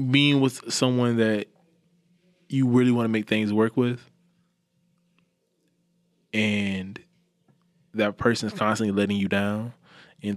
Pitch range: 95-160 Hz